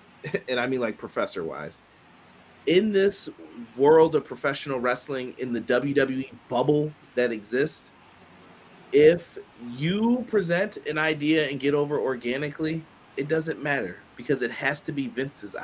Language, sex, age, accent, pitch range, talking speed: English, male, 30-49, American, 125-170 Hz, 135 wpm